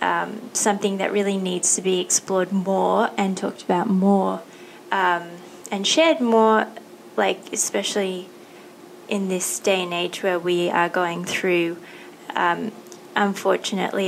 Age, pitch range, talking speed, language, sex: 20-39, 180-205 Hz, 130 wpm, English, female